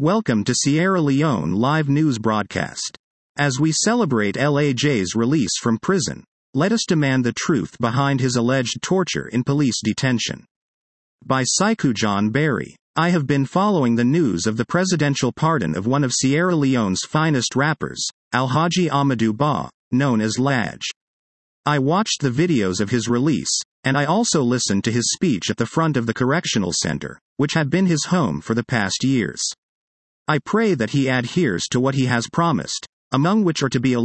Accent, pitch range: American, 120-155 Hz